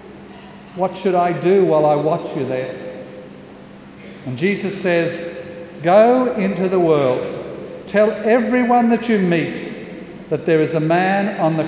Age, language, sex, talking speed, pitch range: 60-79, English, male, 145 wpm, 160-210 Hz